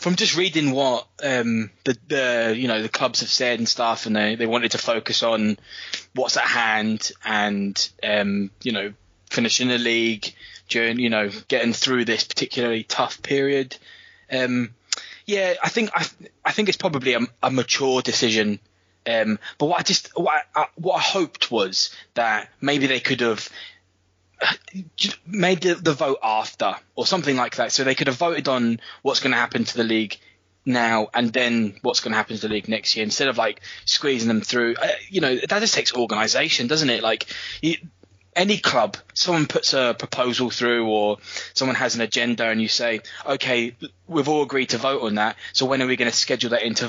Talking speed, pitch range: 195 wpm, 110-140 Hz